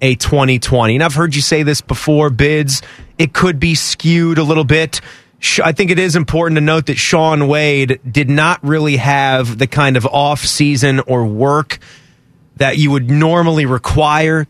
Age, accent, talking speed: 30-49, American, 180 wpm